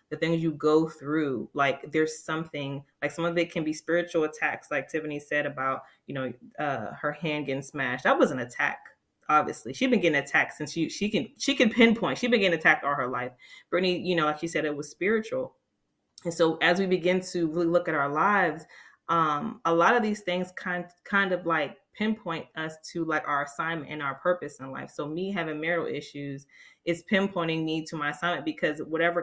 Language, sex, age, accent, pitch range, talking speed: English, female, 20-39, American, 150-200 Hz, 215 wpm